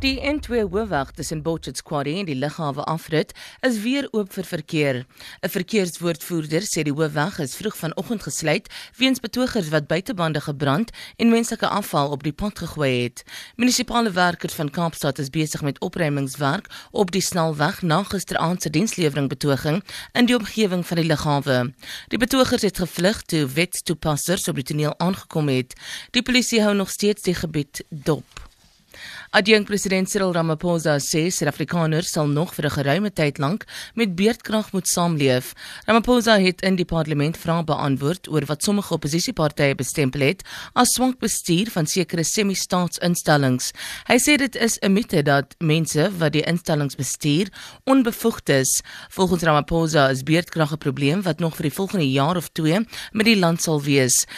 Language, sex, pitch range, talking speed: English, female, 150-205 Hz, 160 wpm